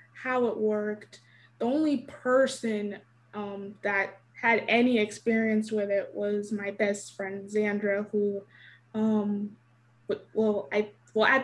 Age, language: 20-39, English